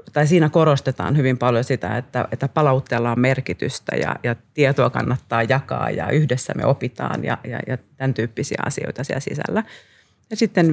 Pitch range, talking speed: 120-145 Hz, 170 wpm